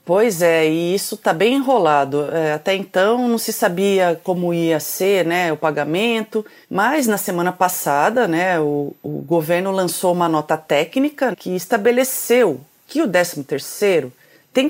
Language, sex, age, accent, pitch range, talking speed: Portuguese, female, 30-49, Brazilian, 175-245 Hz, 145 wpm